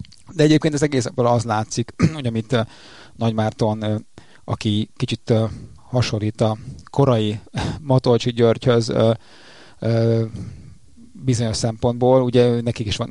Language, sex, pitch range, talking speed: Hungarian, male, 110-120 Hz, 100 wpm